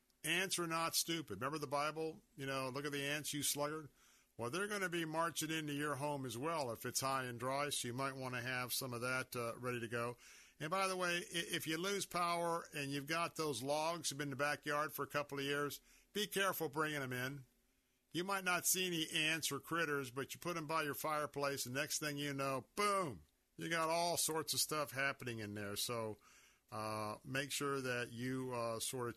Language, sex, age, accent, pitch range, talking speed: English, male, 50-69, American, 130-165 Hz, 230 wpm